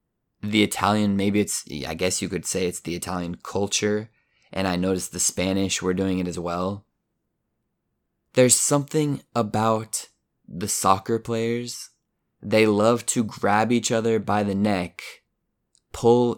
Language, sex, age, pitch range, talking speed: Italian, male, 20-39, 90-110 Hz, 145 wpm